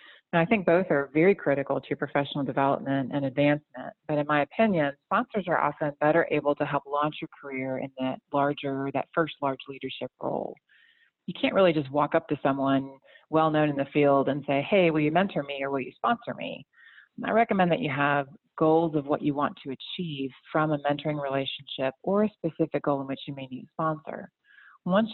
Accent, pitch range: American, 140-165 Hz